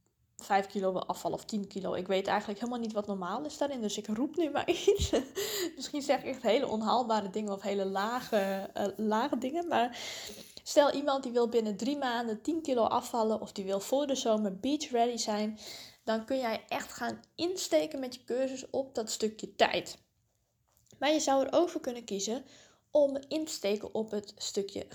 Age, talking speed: 20-39, 195 wpm